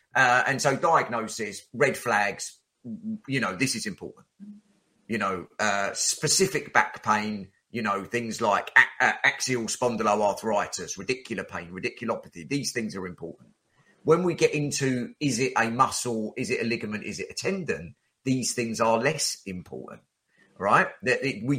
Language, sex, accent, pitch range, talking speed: English, male, British, 110-150 Hz, 155 wpm